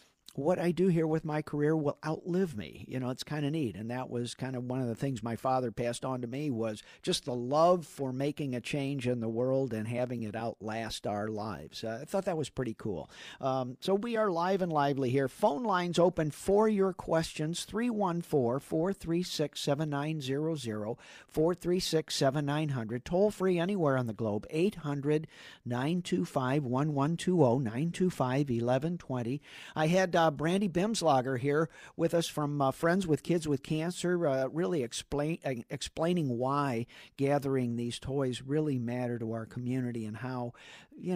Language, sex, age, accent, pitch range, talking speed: English, male, 50-69, American, 125-170 Hz, 160 wpm